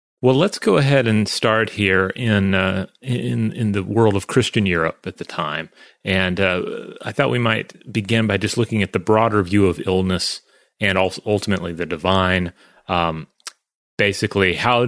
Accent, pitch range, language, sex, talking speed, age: American, 95-115 Hz, English, male, 175 wpm, 30-49